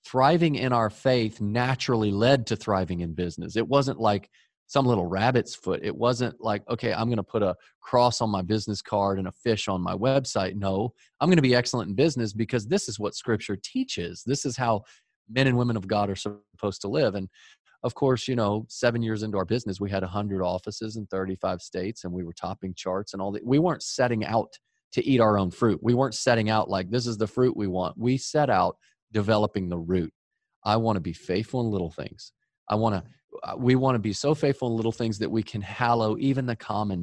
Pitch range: 100-125 Hz